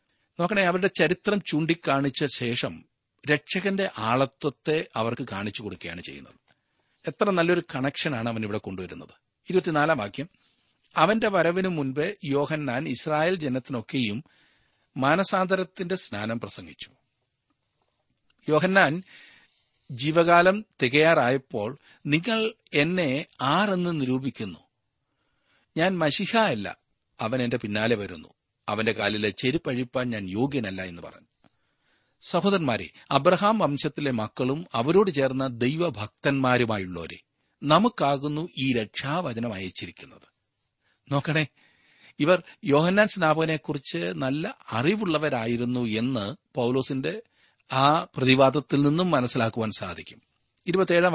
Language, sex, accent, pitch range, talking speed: Malayalam, male, native, 125-175 Hz, 85 wpm